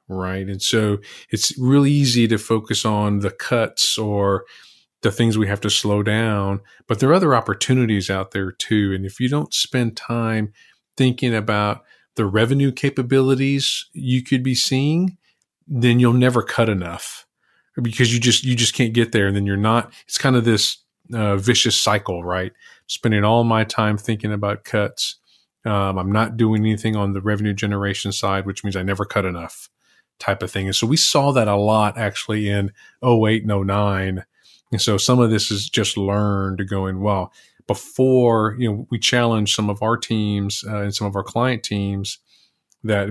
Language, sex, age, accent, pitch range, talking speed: English, male, 40-59, American, 100-120 Hz, 185 wpm